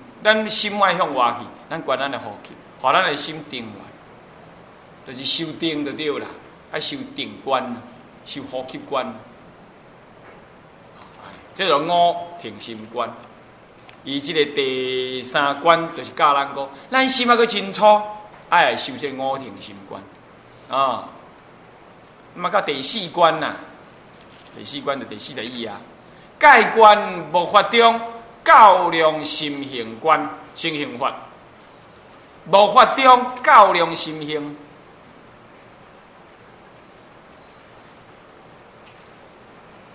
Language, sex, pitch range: Chinese, male, 155-235 Hz